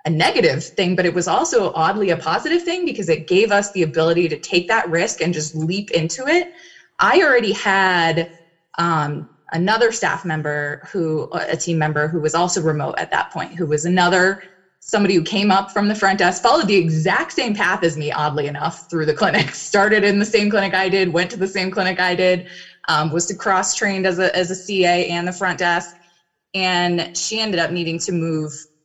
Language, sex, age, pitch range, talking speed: English, female, 20-39, 160-195 Hz, 210 wpm